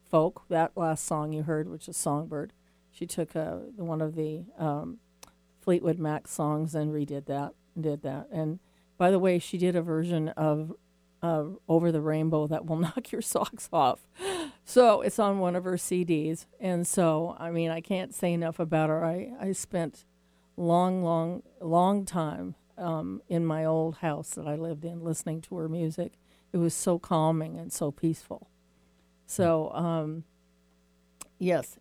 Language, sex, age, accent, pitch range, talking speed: English, female, 50-69, American, 150-175 Hz, 170 wpm